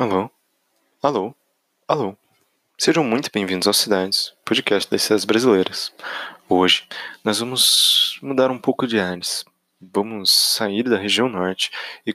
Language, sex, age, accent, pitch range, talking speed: Portuguese, male, 20-39, Brazilian, 95-110 Hz, 130 wpm